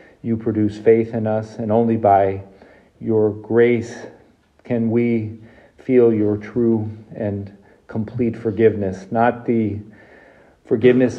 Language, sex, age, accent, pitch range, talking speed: English, male, 40-59, American, 105-115 Hz, 115 wpm